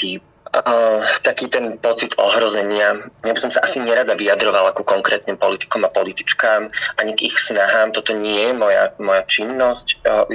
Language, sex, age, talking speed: Slovak, male, 30-49, 160 wpm